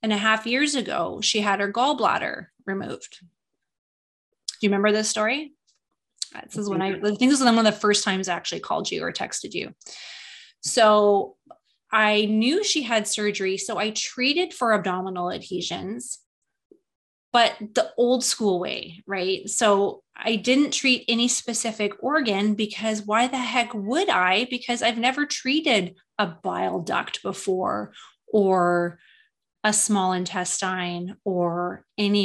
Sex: female